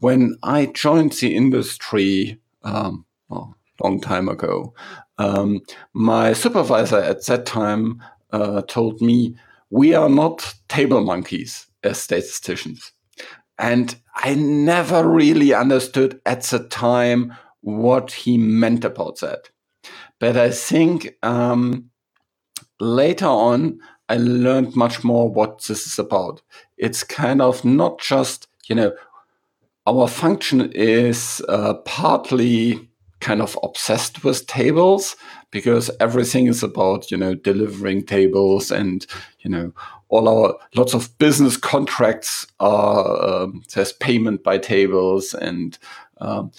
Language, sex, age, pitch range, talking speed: English, male, 50-69, 100-125 Hz, 120 wpm